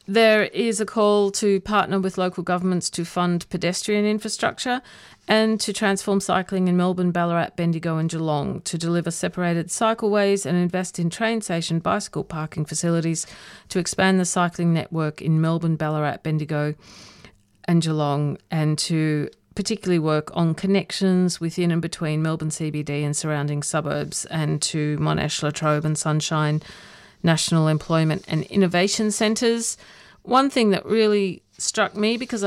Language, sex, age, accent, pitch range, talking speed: English, female, 40-59, Australian, 155-195 Hz, 145 wpm